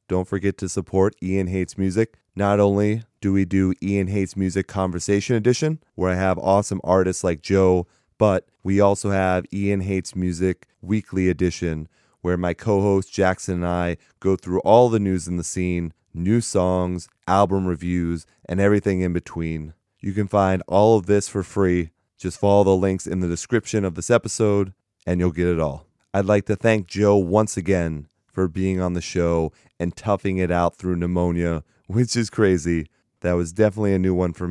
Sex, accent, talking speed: male, American, 185 wpm